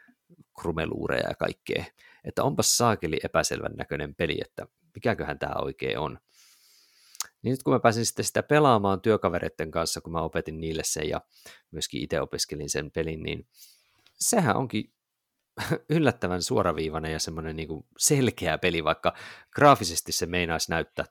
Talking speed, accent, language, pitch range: 135 wpm, native, Finnish, 80-115 Hz